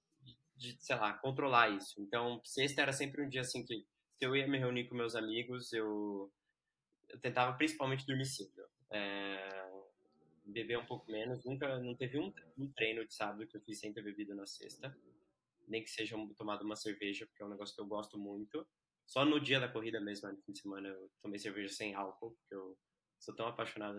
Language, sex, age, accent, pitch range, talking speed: Portuguese, male, 20-39, Brazilian, 110-140 Hz, 205 wpm